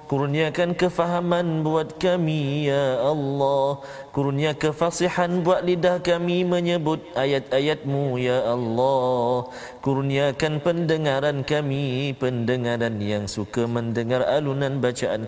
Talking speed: 95 wpm